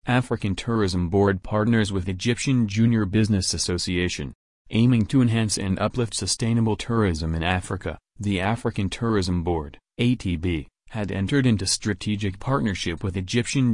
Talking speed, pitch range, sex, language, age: 125 wpm, 90-115 Hz, male, English, 30-49